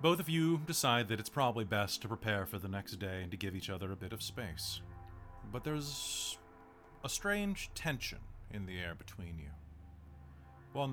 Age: 30-49